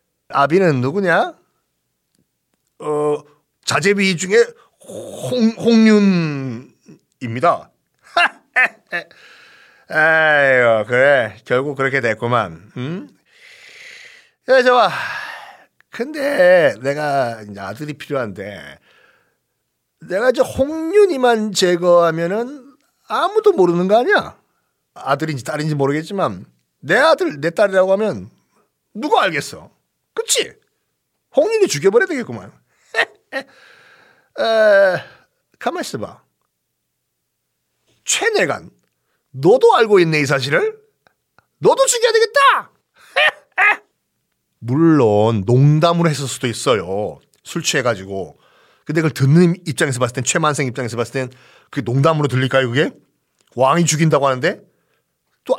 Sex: male